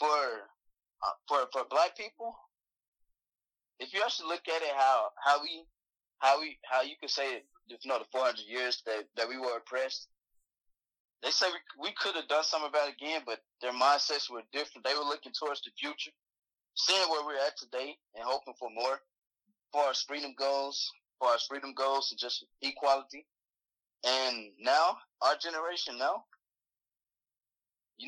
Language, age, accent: English, 20-39, American